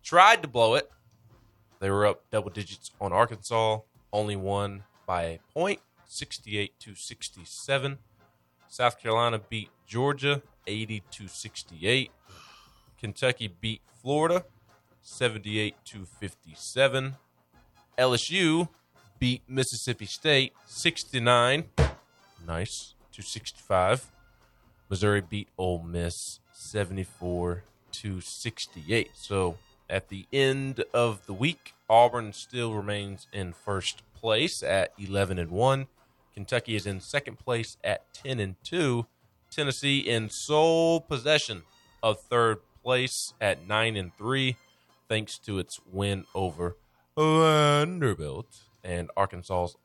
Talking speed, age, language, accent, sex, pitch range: 110 wpm, 20-39, English, American, male, 100-125 Hz